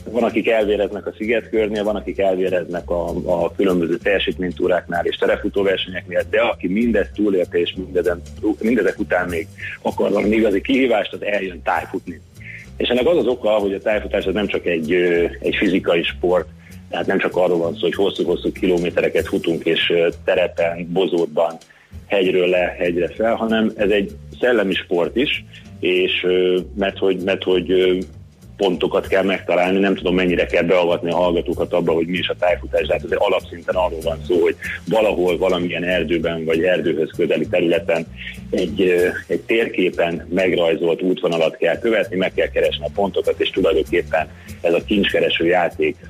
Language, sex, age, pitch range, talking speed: Hungarian, male, 30-49, 85-120 Hz, 155 wpm